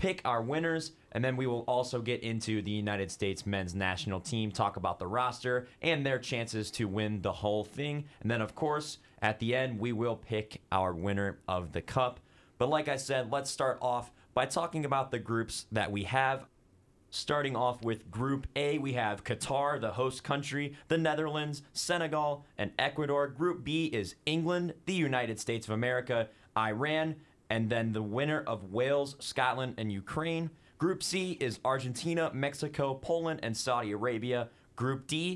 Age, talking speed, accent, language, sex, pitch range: 30-49, 175 wpm, American, English, male, 115-155 Hz